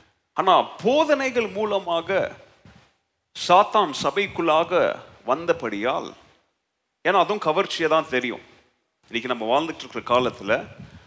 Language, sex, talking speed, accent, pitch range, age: Tamil, male, 80 wpm, native, 145-195 Hz, 30-49